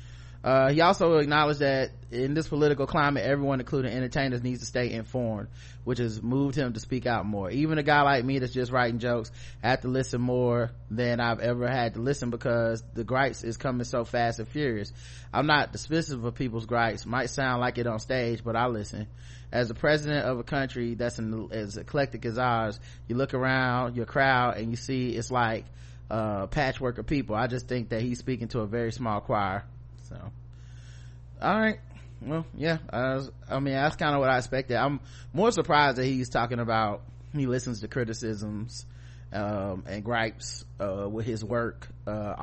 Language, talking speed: English, 195 wpm